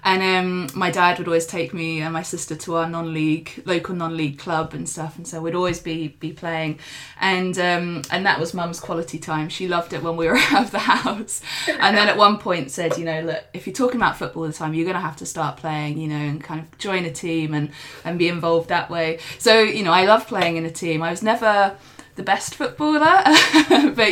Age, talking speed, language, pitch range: 20-39, 240 wpm, English, 160-185 Hz